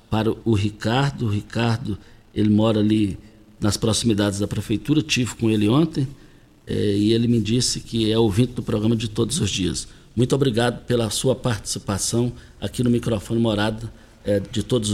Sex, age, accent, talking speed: male, 60-79, Brazilian, 170 wpm